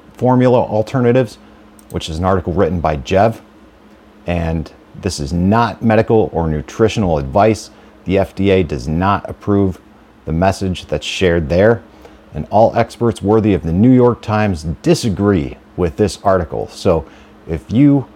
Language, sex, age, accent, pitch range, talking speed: English, male, 40-59, American, 90-110 Hz, 140 wpm